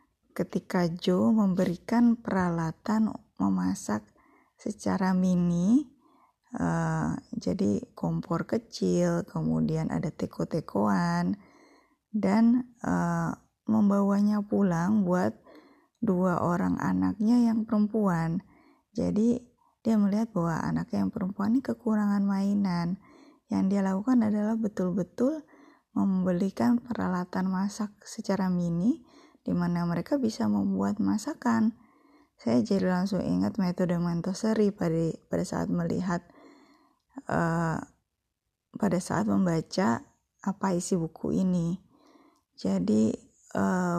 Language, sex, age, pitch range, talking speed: Indonesian, female, 20-39, 175-230 Hz, 100 wpm